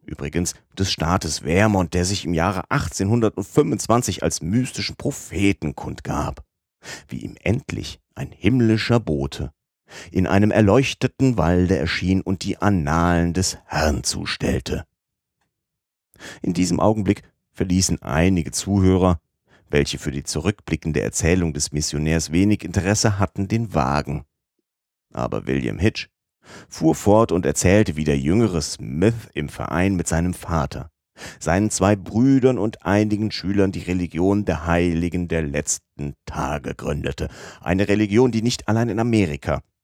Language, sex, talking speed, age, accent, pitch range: German, male, 130 wpm, 40-59, German, 80-105 Hz